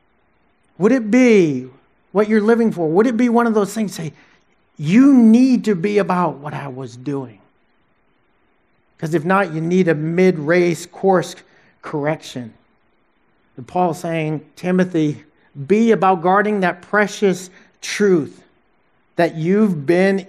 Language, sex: English, male